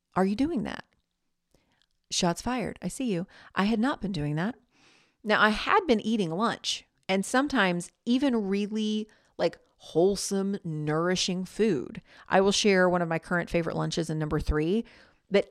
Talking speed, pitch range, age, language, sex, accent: 165 wpm, 170-215 Hz, 40-59, English, female, American